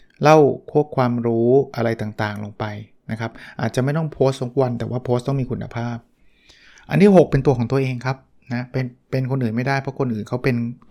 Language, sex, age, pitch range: Thai, male, 20-39, 115-135 Hz